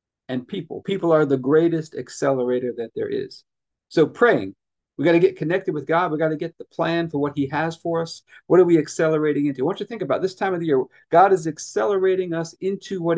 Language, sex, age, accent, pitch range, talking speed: English, male, 40-59, American, 135-180 Hz, 235 wpm